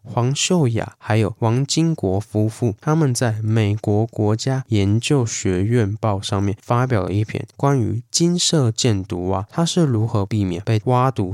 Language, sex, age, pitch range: Chinese, male, 20-39, 100-125 Hz